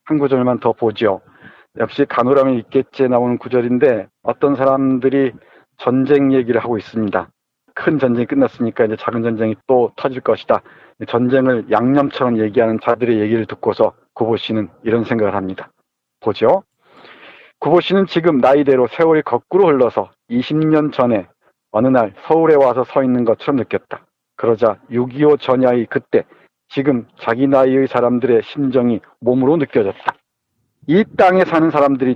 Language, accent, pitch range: Korean, native, 115-140 Hz